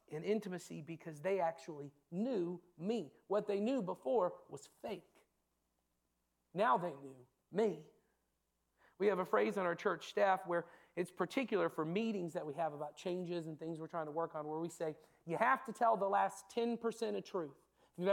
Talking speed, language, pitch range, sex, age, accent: 185 wpm, English, 155-215 Hz, male, 40-59, American